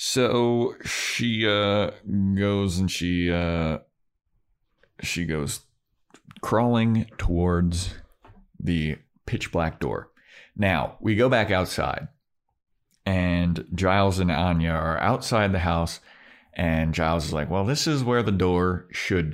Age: 30-49